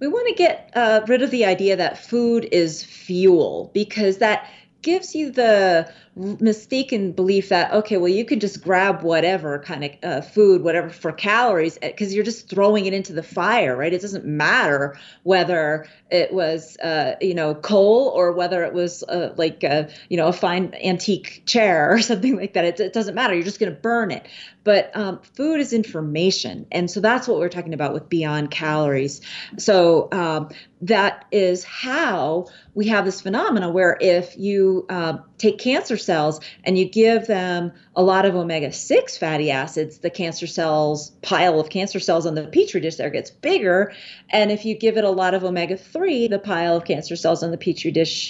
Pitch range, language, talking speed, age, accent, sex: 165-215 Hz, English, 190 wpm, 30-49, American, female